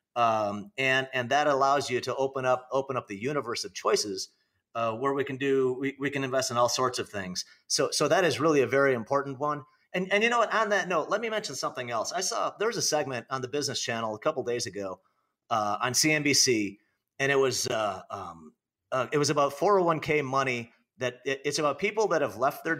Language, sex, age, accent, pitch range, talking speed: English, male, 30-49, American, 125-185 Hz, 230 wpm